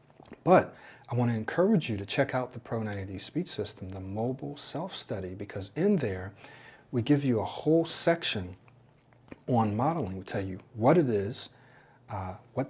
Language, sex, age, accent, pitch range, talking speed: English, male, 40-59, American, 100-130 Hz, 175 wpm